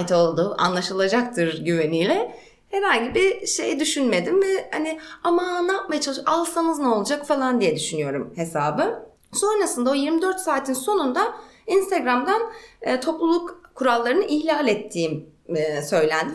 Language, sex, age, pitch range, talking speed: Turkish, female, 30-49, 190-300 Hz, 115 wpm